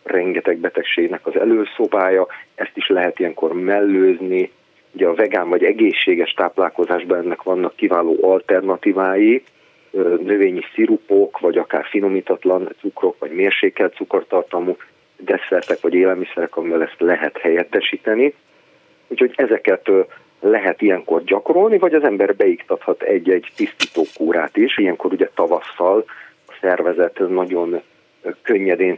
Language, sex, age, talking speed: Hungarian, male, 40-59, 110 wpm